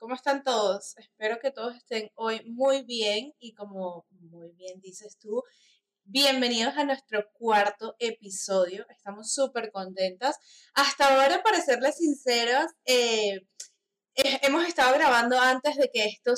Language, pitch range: Spanish, 205-270 Hz